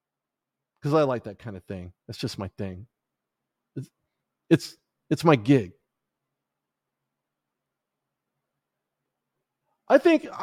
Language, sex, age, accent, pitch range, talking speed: English, male, 40-59, American, 140-195 Hz, 100 wpm